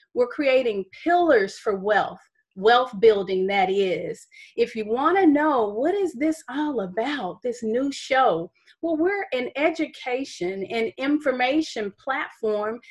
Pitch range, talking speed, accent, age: 225-300 Hz, 130 wpm, American, 30-49